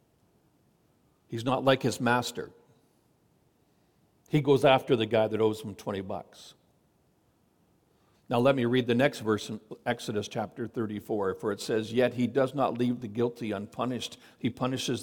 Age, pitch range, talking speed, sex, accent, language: 60-79, 120-170 Hz, 155 wpm, male, American, English